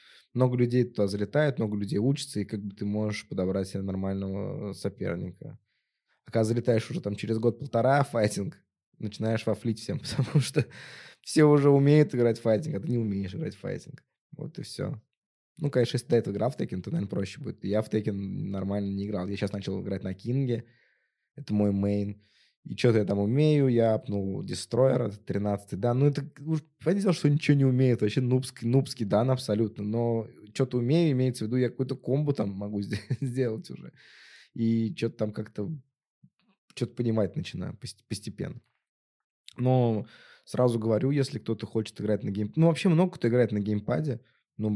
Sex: male